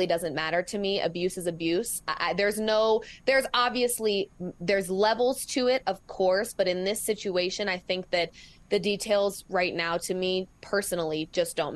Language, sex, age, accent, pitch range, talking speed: English, female, 20-39, American, 180-225 Hz, 170 wpm